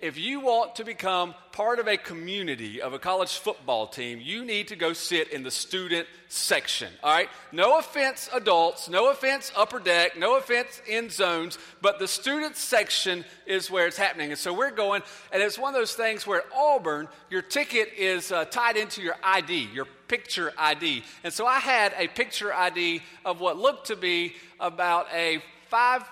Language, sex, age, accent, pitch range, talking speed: English, male, 40-59, American, 125-210 Hz, 190 wpm